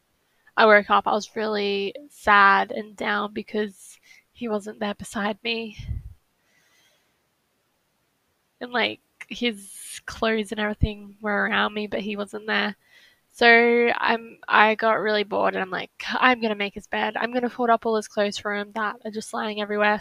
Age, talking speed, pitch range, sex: 10-29, 175 wpm, 210-235 Hz, female